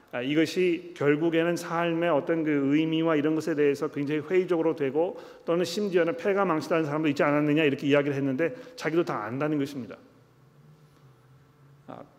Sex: male